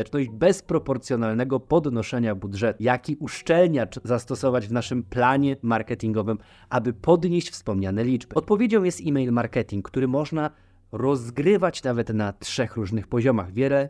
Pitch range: 115-150 Hz